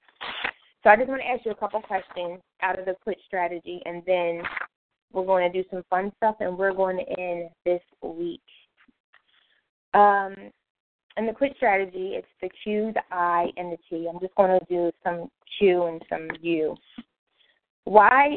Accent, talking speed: American, 180 wpm